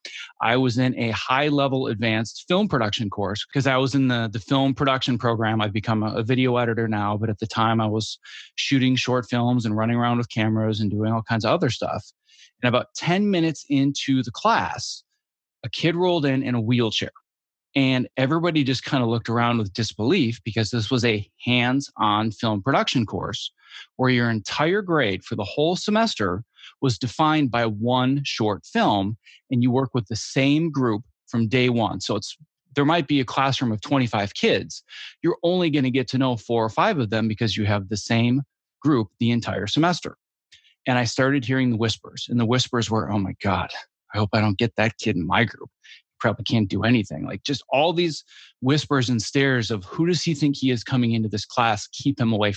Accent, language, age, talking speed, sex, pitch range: American, English, 30-49, 205 wpm, male, 110-135 Hz